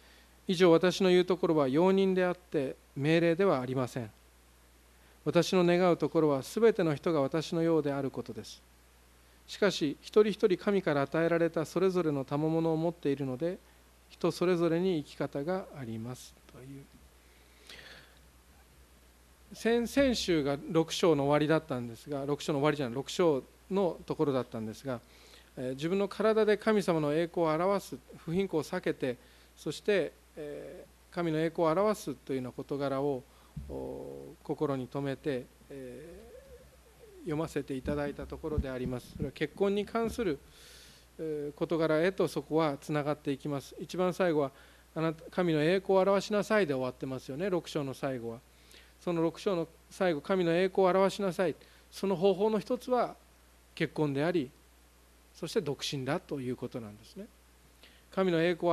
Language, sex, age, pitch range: Japanese, male, 40-59, 125-180 Hz